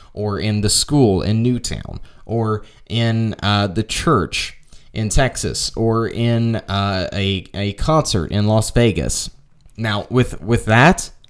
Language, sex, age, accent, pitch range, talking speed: English, male, 20-39, American, 100-125 Hz, 140 wpm